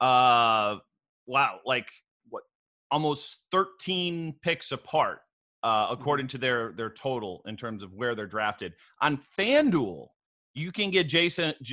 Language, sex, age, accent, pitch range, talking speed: English, male, 30-49, American, 125-165 Hz, 135 wpm